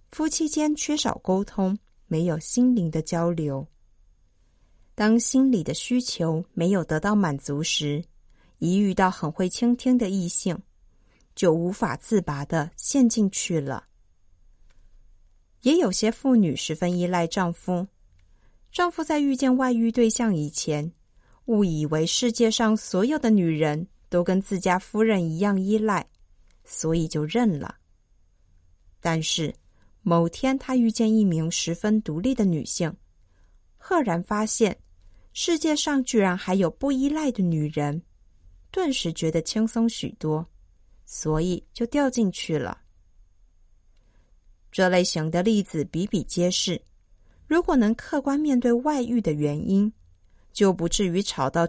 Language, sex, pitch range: Chinese, female, 145-225 Hz